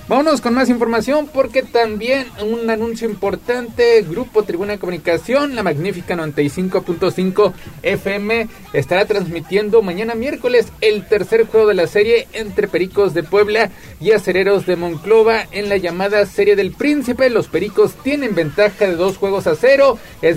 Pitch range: 165-225 Hz